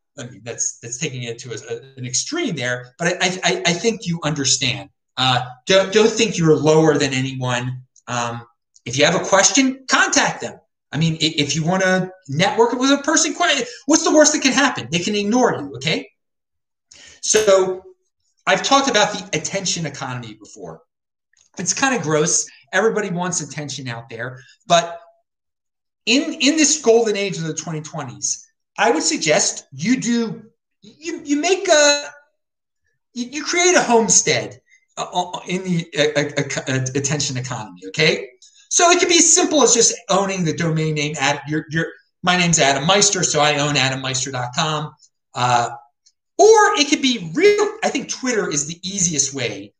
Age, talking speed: 30-49, 160 wpm